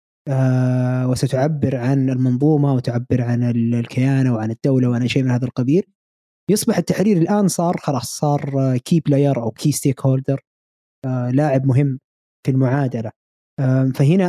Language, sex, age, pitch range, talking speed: Arabic, male, 20-39, 130-150 Hz, 145 wpm